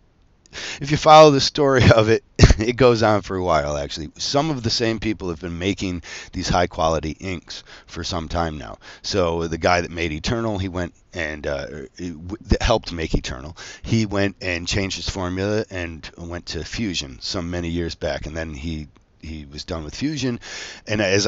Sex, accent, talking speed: male, American, 195 wpm